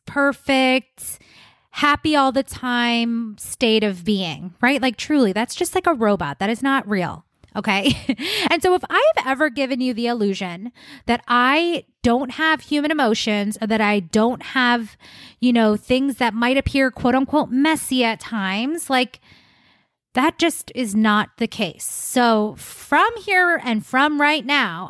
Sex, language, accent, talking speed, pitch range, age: female, English, American, 160 wpm, 220-290 Hz, 20-39